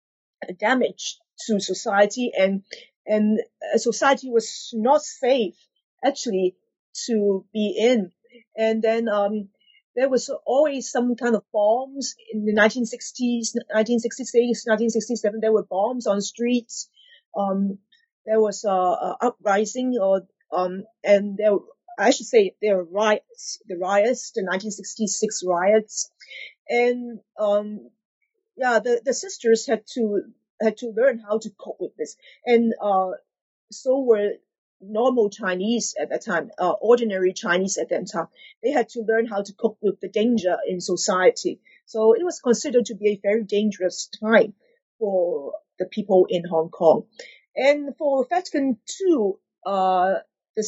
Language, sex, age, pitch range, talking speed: English, female, 40-59, 210-270 Hz, 150 wpm